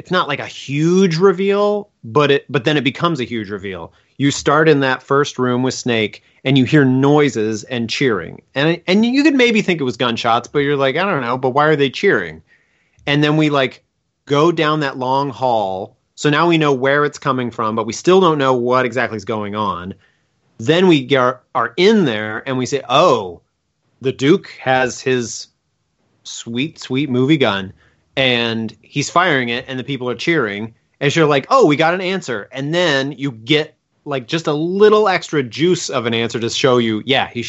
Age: 30-49